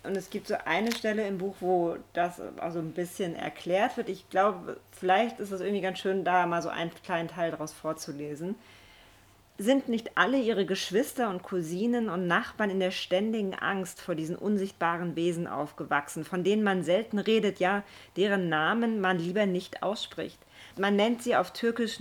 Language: German